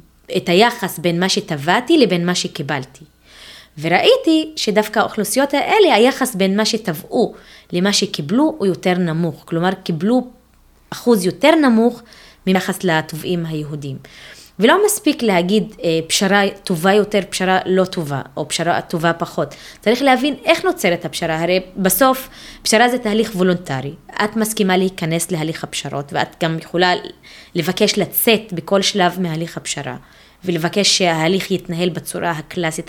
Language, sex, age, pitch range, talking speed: Hebrew, female, 20-39, 165-215 Hz, 135 wpm